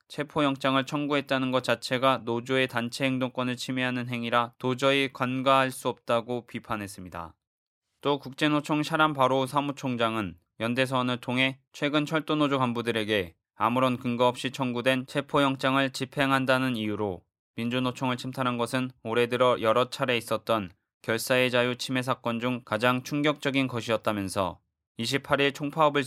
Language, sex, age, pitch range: Korean, male, 20-39, 115-130 Hz